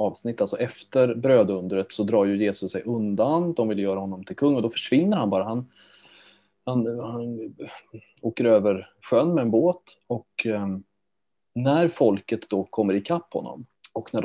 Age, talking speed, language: 20-39, 170 wpm, Swedish